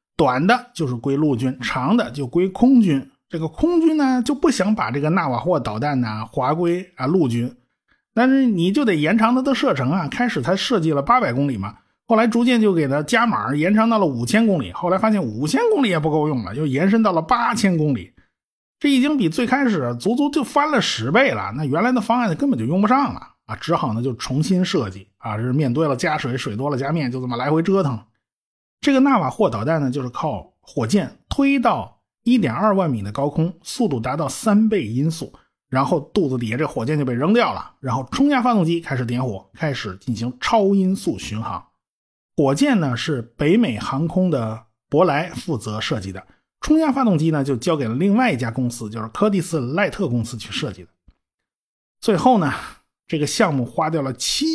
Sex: male